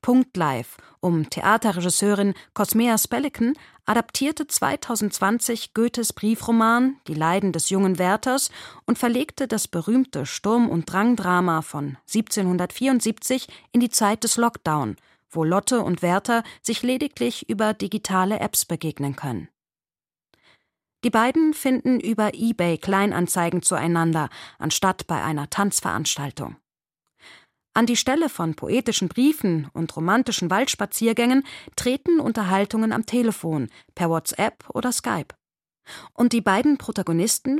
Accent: German